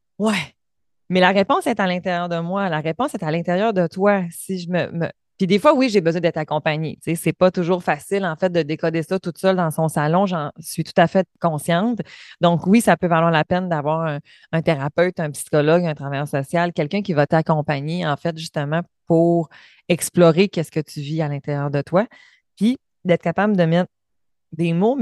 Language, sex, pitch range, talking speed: French, female, 155-190 Hz, 215 wpm